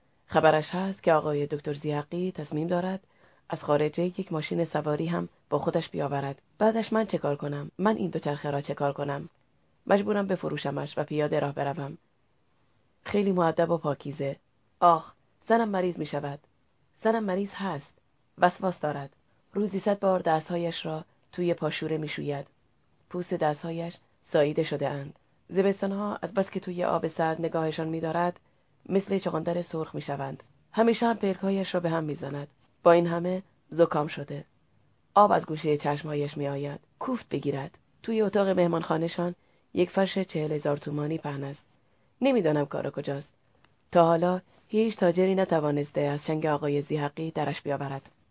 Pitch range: 145-180 Hz